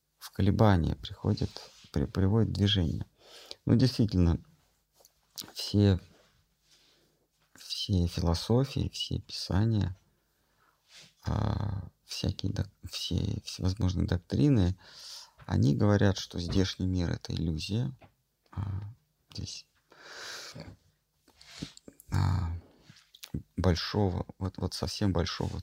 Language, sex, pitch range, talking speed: Russian, male, 90-110 Hz, 70 wpm